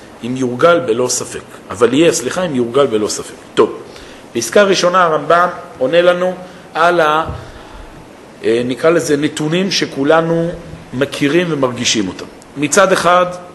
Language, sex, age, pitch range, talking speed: Hebrew, male, 40-59, 130-180 Hz, 125 wpm